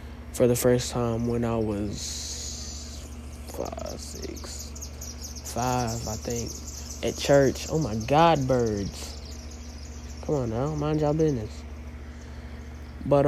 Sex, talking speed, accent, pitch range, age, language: male, 115 wpm, American, 75-125 Hz, 20-39, English